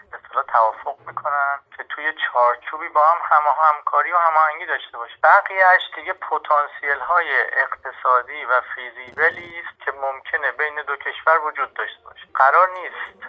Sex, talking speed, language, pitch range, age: male, 145 wpm, Persian, 125-155 Hz, 30-49